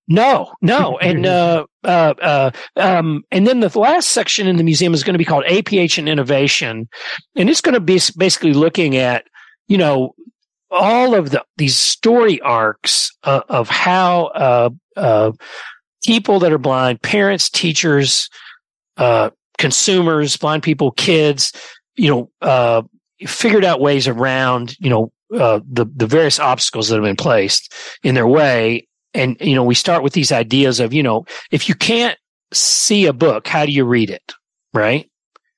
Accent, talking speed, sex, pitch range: American, 165 wpm, male, 135-195 Hz